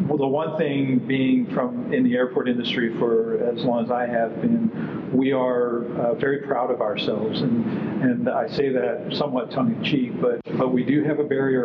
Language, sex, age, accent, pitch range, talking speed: English, male, 50-69, American, 120-175 Hz, 195 wpm